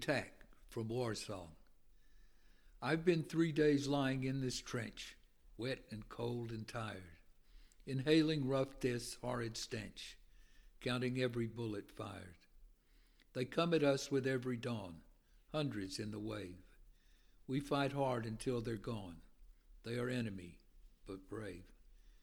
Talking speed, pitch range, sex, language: 130 wpm, 105-130 Hz, male, English